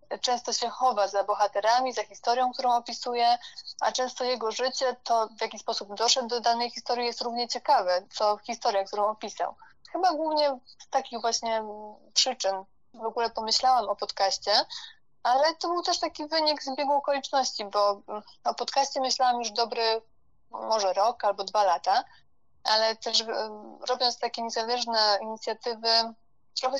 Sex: female